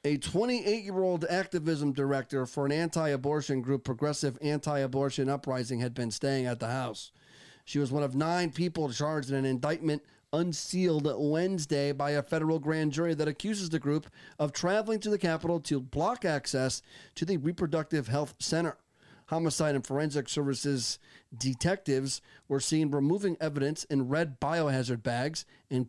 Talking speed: 150 wpm